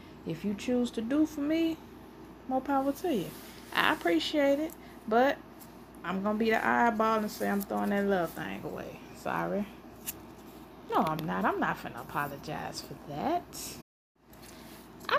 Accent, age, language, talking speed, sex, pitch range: American, 20-39, English, 160 wpm, female, 180-275 Hz